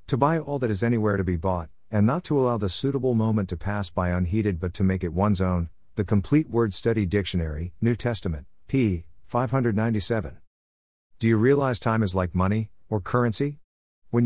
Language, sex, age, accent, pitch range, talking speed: English, male, 50-69, American, 90-120 Hz, 190 wpm